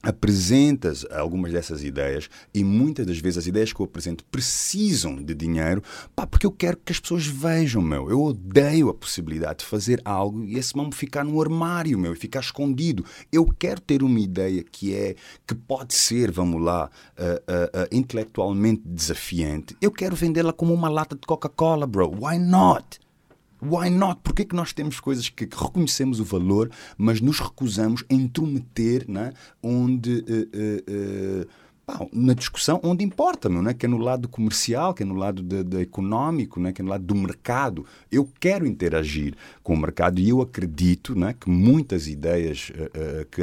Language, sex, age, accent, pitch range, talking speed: Portuguese, male, 30-49, Brazilian, 90-135 Hz, 185 wpm